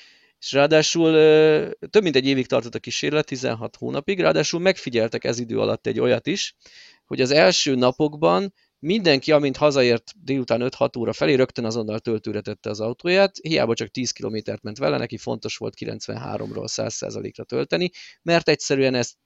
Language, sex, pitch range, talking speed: Hungarian, male, 110-155 Hz, 155 wpm